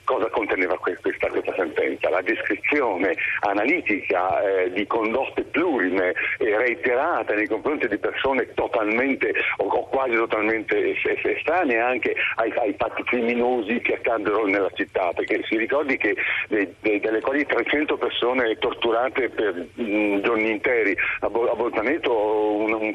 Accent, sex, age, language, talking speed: native, male, 50-69, Italian, 135 wpm